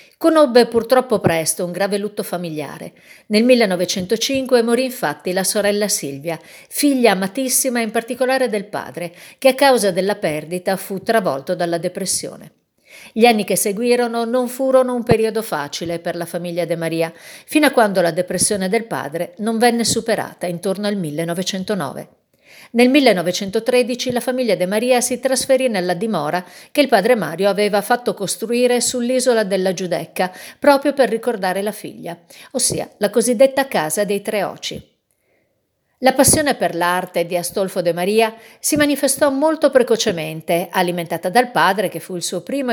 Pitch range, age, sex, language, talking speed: 180-245 Hz, 50-69, female, Italian, 150 wpm